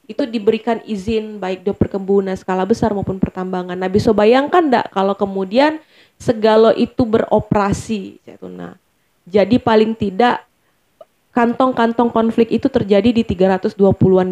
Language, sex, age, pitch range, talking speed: Indonesian, female, 20-39, 200-245 Hz, 120 wpm